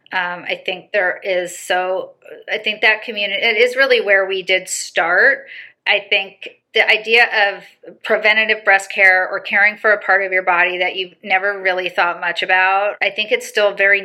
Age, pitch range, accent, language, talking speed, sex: 30-49, 185-225 Hz, American, English, 190 wpm, female